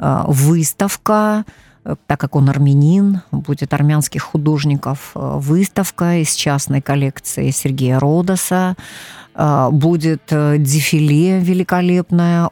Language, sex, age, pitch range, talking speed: Russian, female, 40-59, 150-185 Hz, 80 wpm